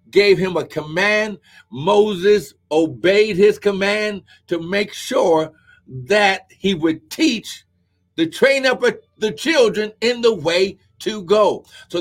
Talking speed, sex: 130 wpm, male